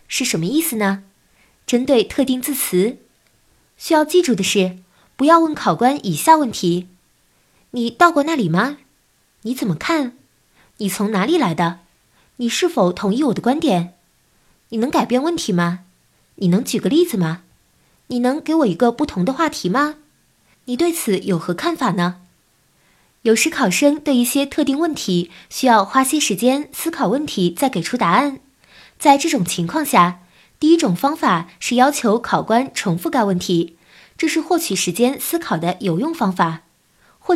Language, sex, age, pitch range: Chinese, female, 20-39, 185-285 Hz